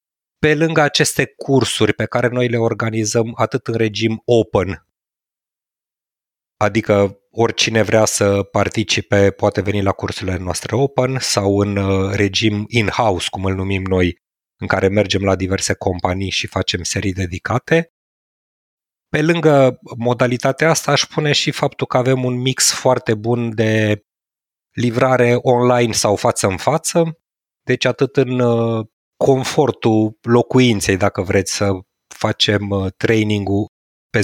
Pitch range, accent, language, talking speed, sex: 100-125 Hz, native, Romanian, 135 wpm, male